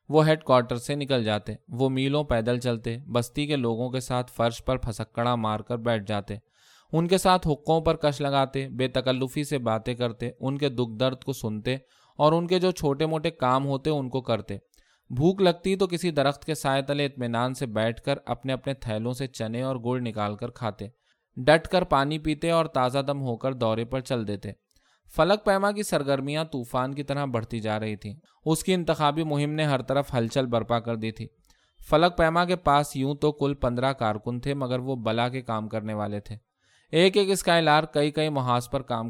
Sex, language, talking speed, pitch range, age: male, Urdu, 210 wpm, 120-150 Hz, 20-39